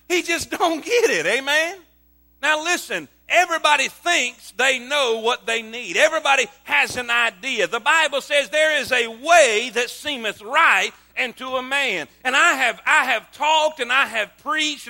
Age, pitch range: 40-59, 255-330 Hz